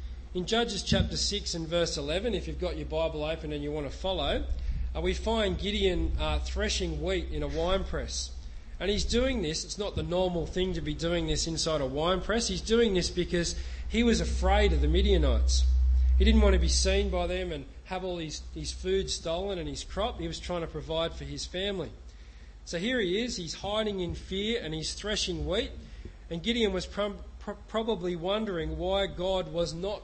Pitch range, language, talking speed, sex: 145-195 Hz, English, 210 wpm, male